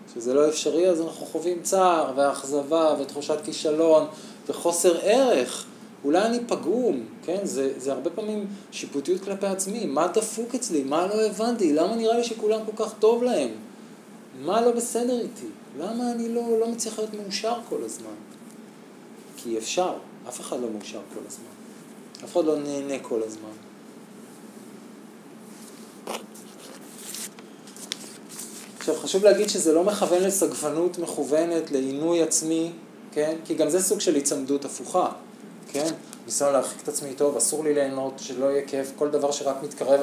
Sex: male